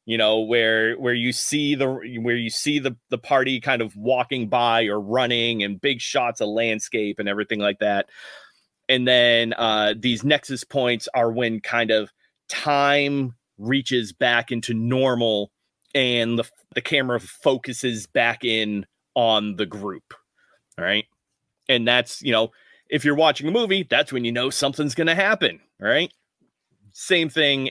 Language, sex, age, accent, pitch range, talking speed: English, male, 30-49, American, 110-140 Hz, 165 wpm